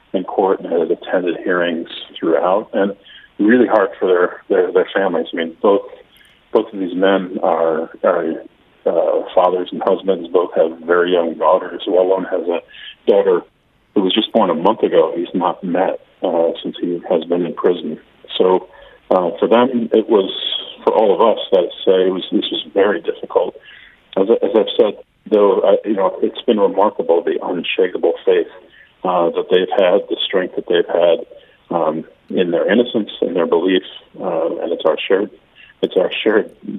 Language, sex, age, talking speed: English, male, 40-59, 185 wpm